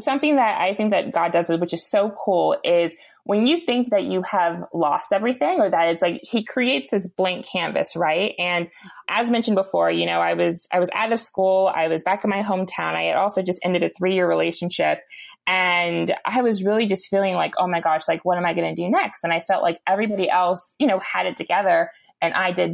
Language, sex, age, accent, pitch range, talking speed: English, female, 20-39, American, 175-220 Hz, 235 wpm